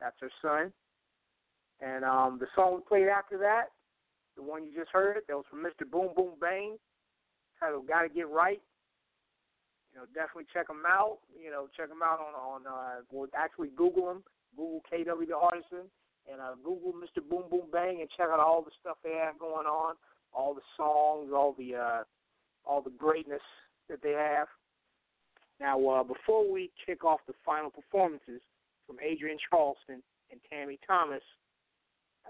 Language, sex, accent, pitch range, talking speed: English, male, American, 145-190 Hz, 180 wpm